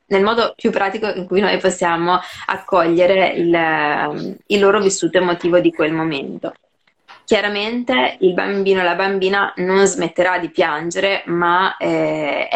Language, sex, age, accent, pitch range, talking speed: Italian, female, 20-39, native, 170-200 Hz, 140 wpm